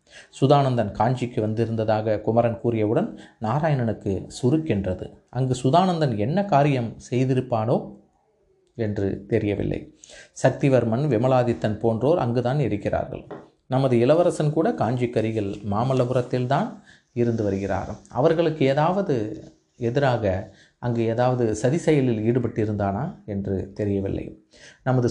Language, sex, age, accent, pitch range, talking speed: Tamil, male, 30-49, native, 110-135 Hz, 90 wpm